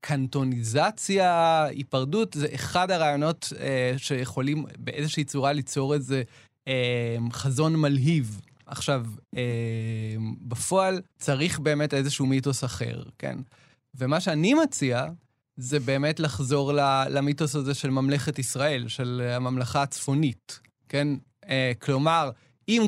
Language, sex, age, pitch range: Hebrew, male, 20-39, 125-155 Hz